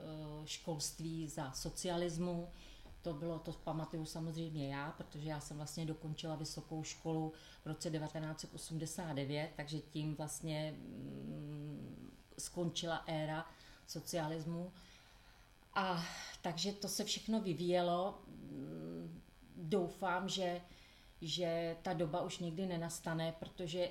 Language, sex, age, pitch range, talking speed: Czech, female, 30-49, 155-170 Hz, 100 wpm